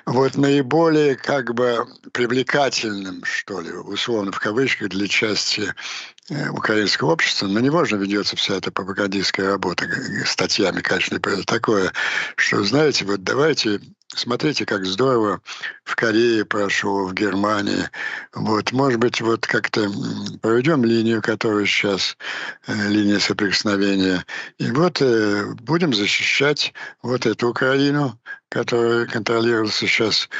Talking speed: 120 wpm